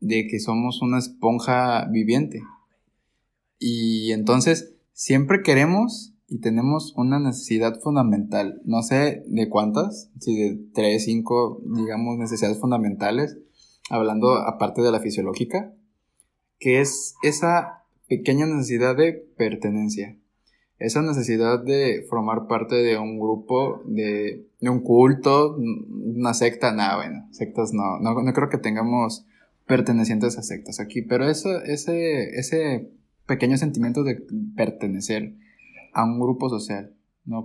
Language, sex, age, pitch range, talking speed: Spanish, male, 20-39, 110-140 Hz, 125 wpm